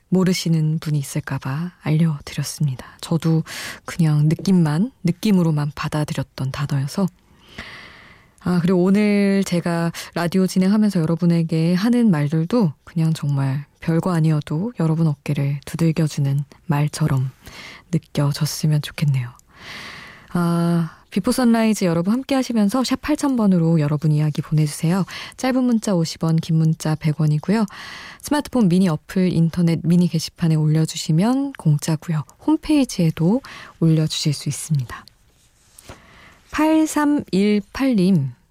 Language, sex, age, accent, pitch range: Korean, female, 20-39, native, 155-190 Hz